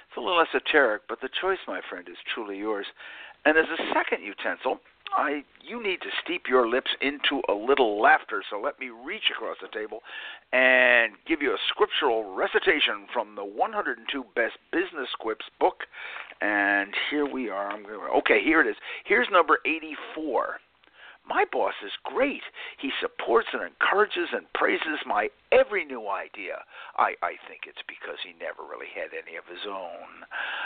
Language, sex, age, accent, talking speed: English, male, 60-79, American, 170 wpm